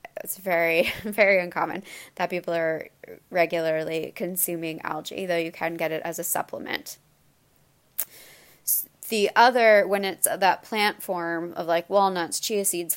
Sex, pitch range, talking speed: female, 170-195 Hz, 140 wpm